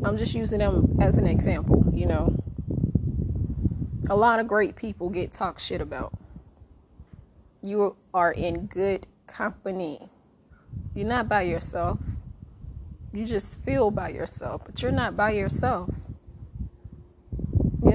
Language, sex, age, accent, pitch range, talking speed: English, female, 20-39, American, 175-255 Hz, 125 wpm